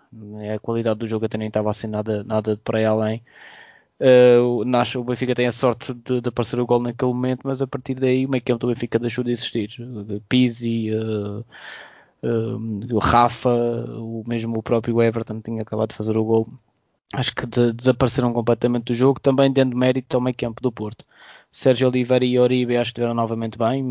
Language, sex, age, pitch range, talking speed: Portuguese, male, 20-39, 115-130 Hz, 190 wpm